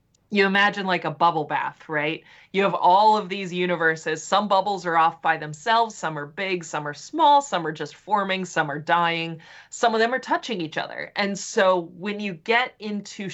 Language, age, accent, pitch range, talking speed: English, 20-39, American, 160-205 Hz, 205 wpm